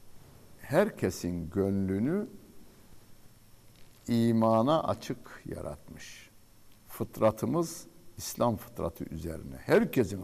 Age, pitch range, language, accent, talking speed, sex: 60-79, 85-115 Hz, Turkish, native, 60 wpm, male